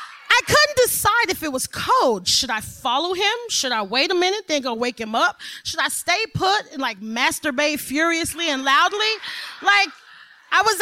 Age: 30-49